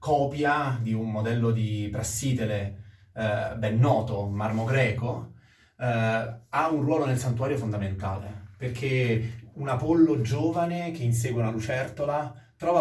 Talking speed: 125 wpm